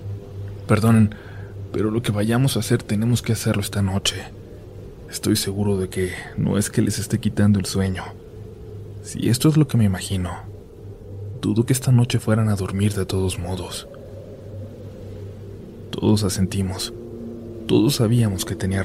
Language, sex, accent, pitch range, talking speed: Spanish, male, Mexican, 100-115 Hz, 155 wpm